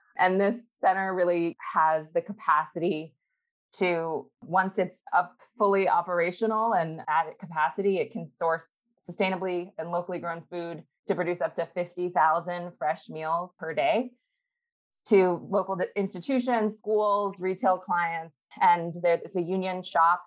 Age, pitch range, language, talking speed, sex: 20-39, 160-205 Hz, English, 130 wpm, female